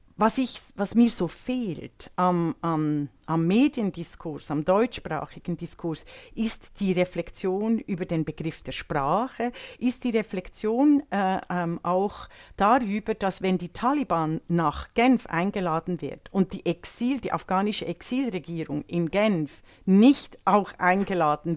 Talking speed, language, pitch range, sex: 130 wpm, German, 170-205 Hz, female